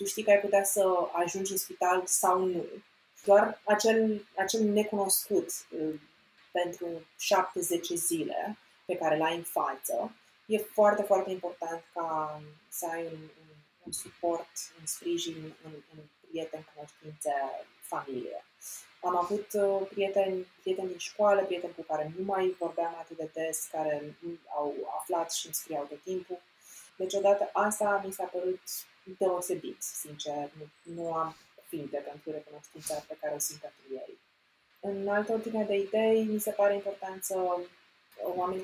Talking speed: 150 wpm